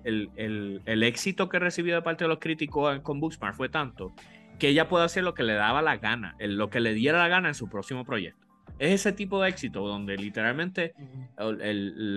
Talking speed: 220 wpm